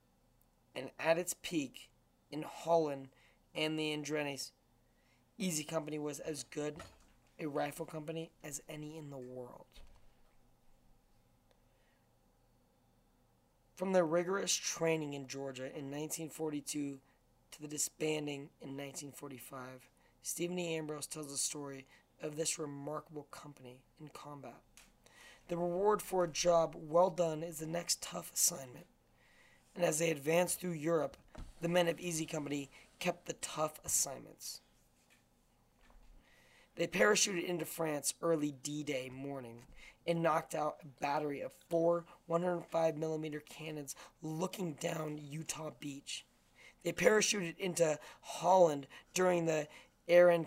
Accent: American